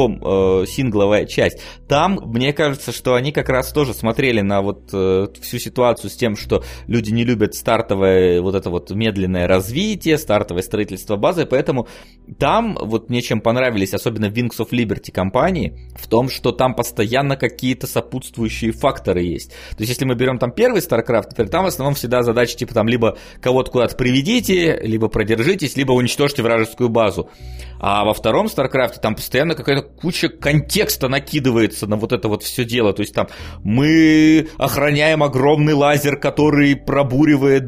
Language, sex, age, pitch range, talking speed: Russian, male, 20-39, 110-145 Hz, 160 wpm